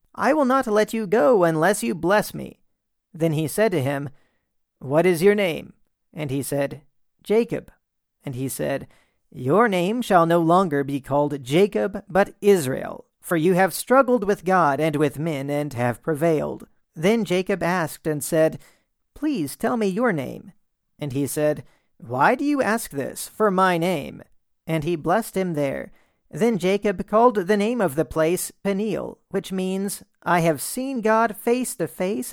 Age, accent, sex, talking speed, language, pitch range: 40-59, American, male, 170 wpm, English, 155-210 Hz